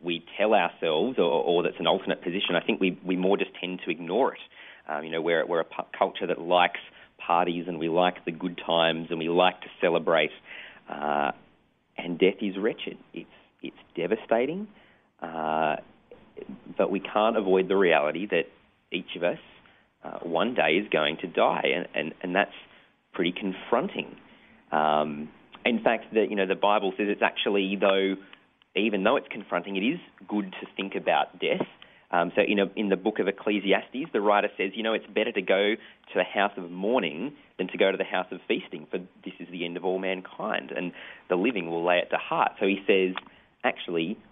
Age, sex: 30-49, male